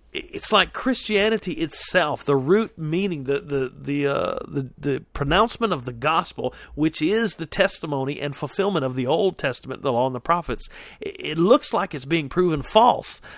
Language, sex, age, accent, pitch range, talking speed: English, male, 40-59, American, 135-180 Hz, 170 wpm